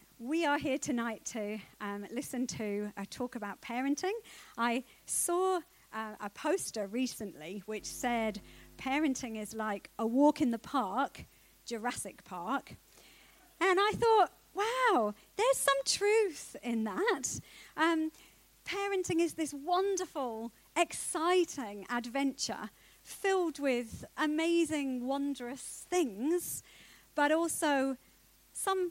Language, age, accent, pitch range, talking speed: English, 40-59, British, 235-325 Hz, 110 wpm